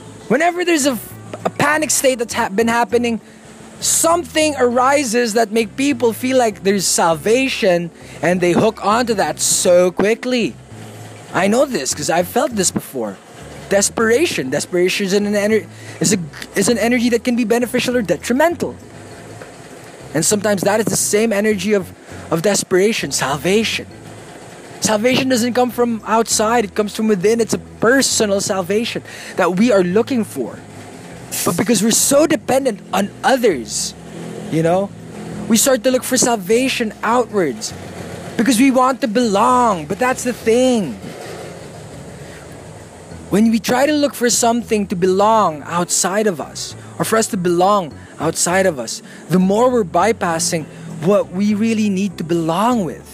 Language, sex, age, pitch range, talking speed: English, male, 20-39, 190-245 Hz, 145 wpm